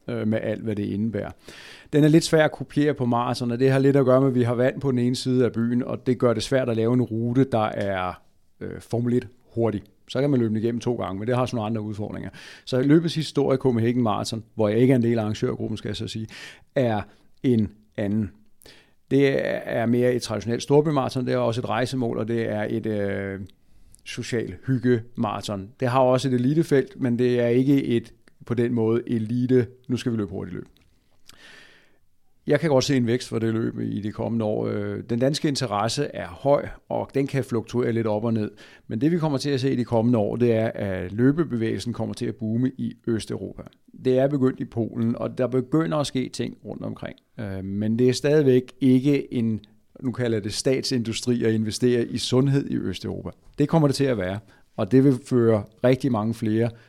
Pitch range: 110-130 Hz